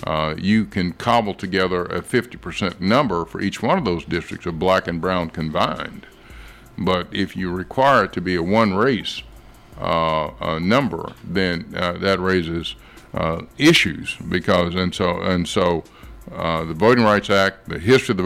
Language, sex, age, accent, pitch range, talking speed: English, male, 50-69, American, 85-100 Hz, 170 wpm